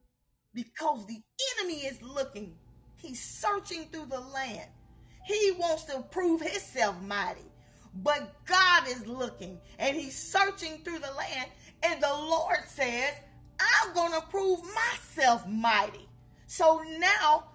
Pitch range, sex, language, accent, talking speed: 265-345 Hz, female, Finnish, American, 130 wpm